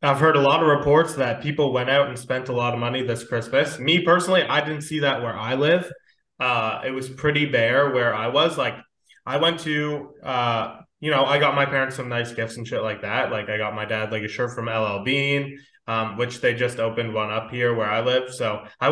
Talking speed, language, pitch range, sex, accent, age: 245 wpm, English, 115-145 Hz, male, American, 20-39